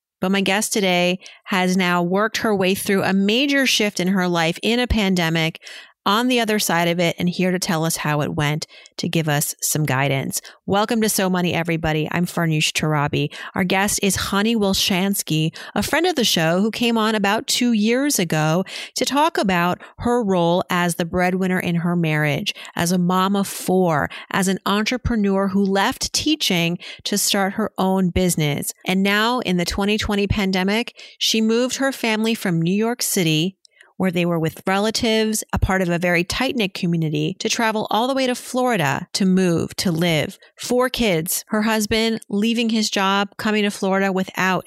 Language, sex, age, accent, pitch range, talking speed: English, female, 30-49, American, 175-220 Hz, 185 wpm